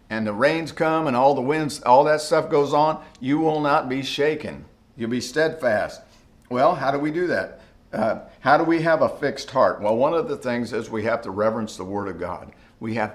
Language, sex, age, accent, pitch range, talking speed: English, male, 50-69, American, 105-145 Hz, 235 wpm